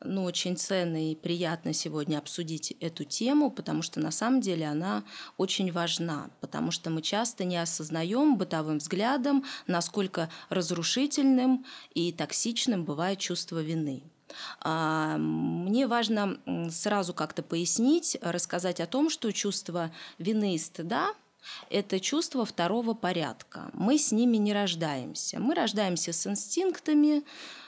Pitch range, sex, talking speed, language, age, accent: 170-255 Hz, female, 130 wpm, Russian, 20-39, native